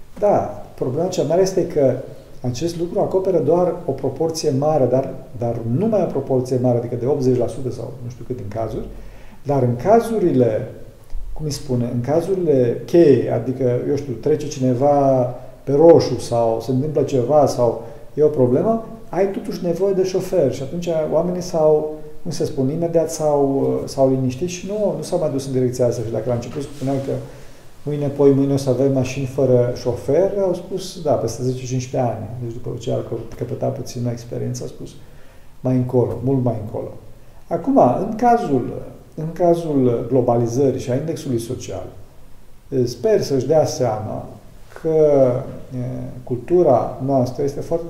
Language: Romanian